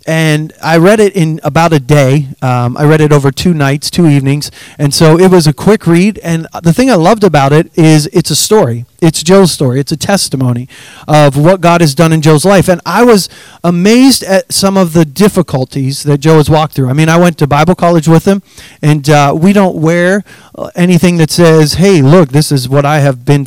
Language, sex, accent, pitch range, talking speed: English, male, American, 150-195 Hz, 225 wpm